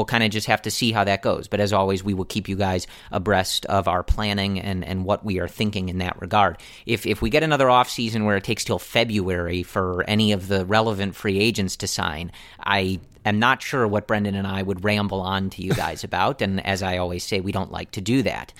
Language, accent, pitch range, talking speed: English, American, 95-115 Hz, 250 wpm